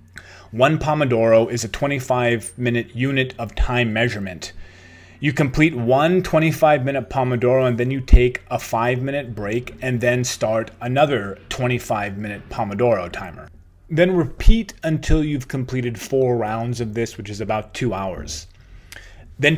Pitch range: 110-140 Hz